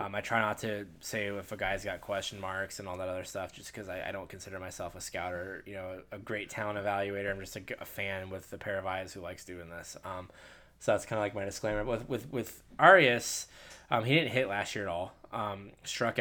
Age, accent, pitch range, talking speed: 10-29, American, 100-115 Hz, 255 wpm